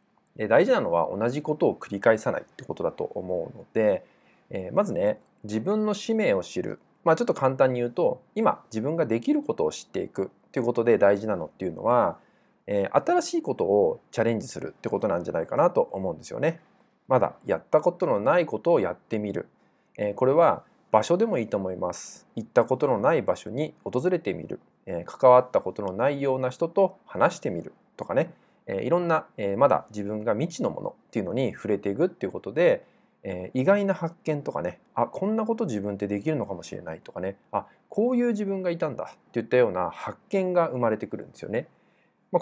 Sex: male